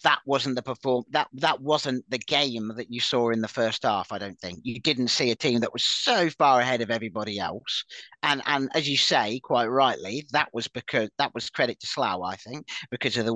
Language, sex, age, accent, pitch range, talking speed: English, male, 40-59, British, 110-135 Hz, 235 wpm